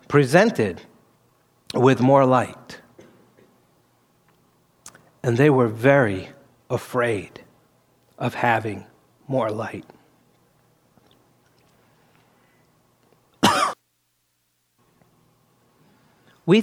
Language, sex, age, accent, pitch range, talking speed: English, male, 60-79, American, 115-145 Hz, 50 wpm